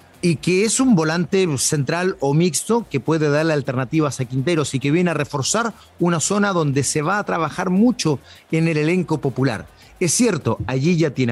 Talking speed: 190 wpm